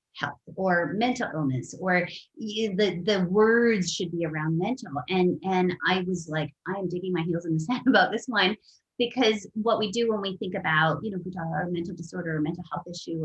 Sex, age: female, 30-49